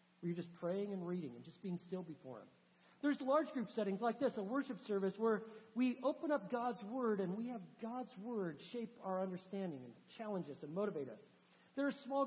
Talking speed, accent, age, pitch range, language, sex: 215 wpm, American, 50-69, 175-245 Hz, English, male